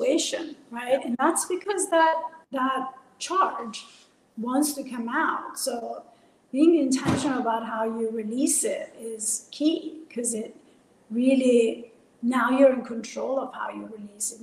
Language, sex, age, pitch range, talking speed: English, female, 40-59, 230-275 Hz, 135 wpm